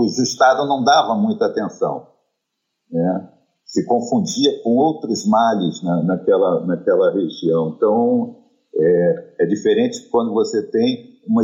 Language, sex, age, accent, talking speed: Portuguese, male, 50-69, Brazilian, 125 wpm